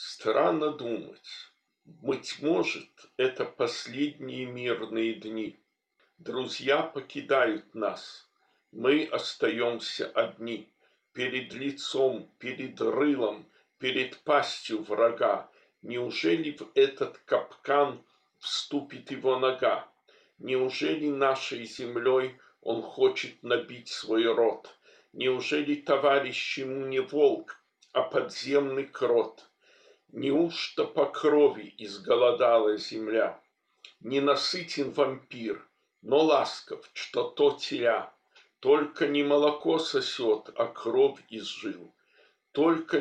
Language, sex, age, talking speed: Russian, male, 50-69, 90 wpm